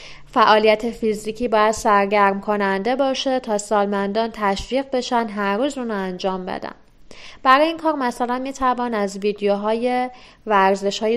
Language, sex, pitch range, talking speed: Persian, female, 200-245 Hz, 135 wpm